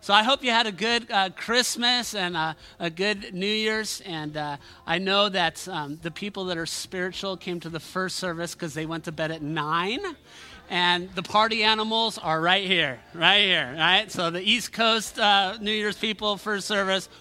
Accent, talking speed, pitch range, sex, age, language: American, 200 wpm, 170-225 Hz, male, 30-49, English